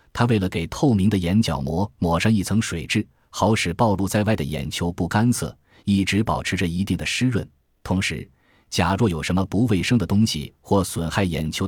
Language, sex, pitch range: Chinese, male, 85-115 Hz